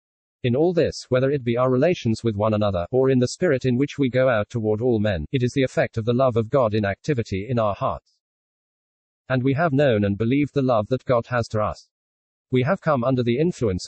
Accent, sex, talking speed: British, male, 240 wpm